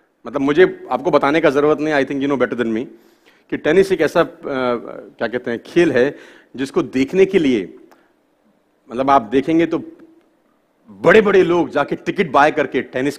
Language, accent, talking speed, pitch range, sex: Hindi, native, 175 wpm, 225-300 Hz, male